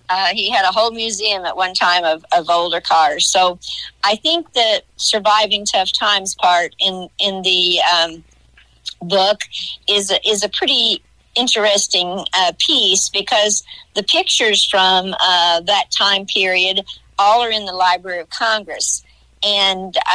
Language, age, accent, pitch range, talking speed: English, 50-69, American, 185-215 Hz, 150 wpm